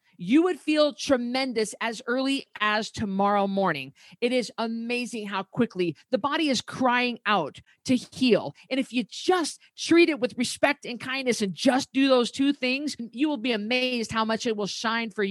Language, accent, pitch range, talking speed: English, American, 205-265 Hz, 185 wpm